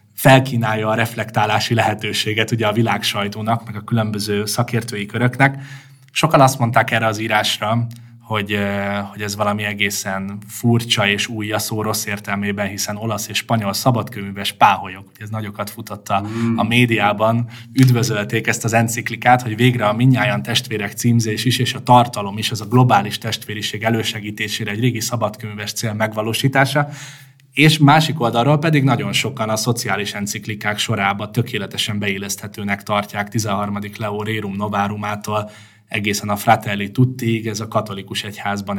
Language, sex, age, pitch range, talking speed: Hungarian, male, 20-39, 100-115 Hz, 140 wpm